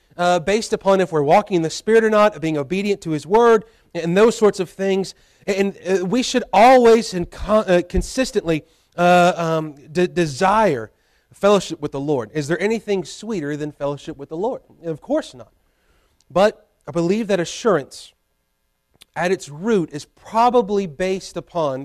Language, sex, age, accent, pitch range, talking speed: English, male, 30-49, American, 150-200 Hz, 175 wpm